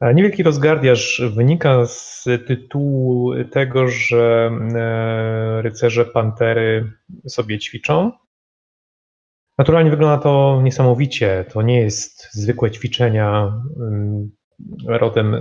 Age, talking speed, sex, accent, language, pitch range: 30-49, 80 wpm, male, native, Polish, 115-130 Hz